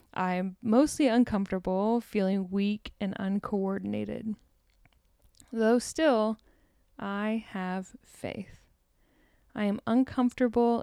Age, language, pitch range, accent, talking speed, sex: 10-29, English, 195-235 Hz, American, 90 wpm, female